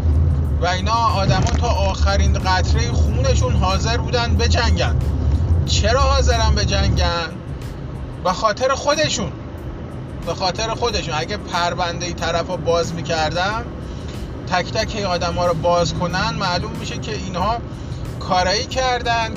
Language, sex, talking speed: Persian, male, 125 wpm